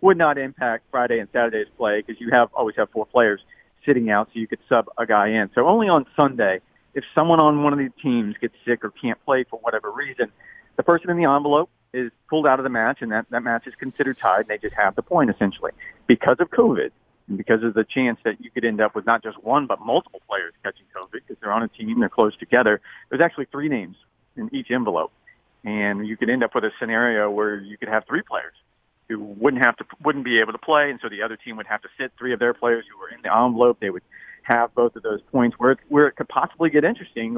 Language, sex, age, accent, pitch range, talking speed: English, male, 40-59, American, 110-135 Hz, 255 wpm